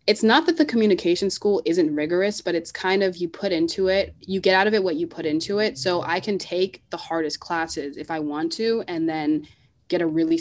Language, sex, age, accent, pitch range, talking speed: English, female, 20-39, American, 155-195 Hz, 240 wpm